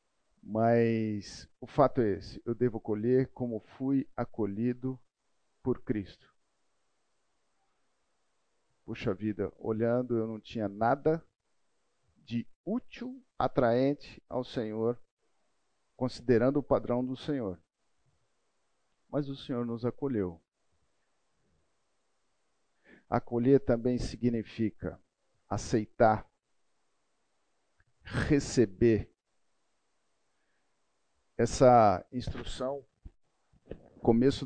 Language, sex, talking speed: Portuguese, male, 75 wpm